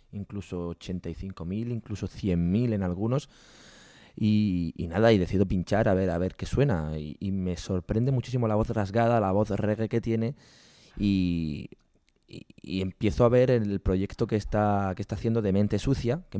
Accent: Spanish